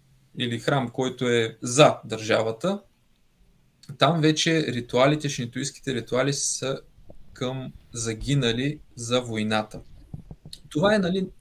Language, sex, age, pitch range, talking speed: Bulgarian, male, 20-39, 120-150 Hz, 100 wpm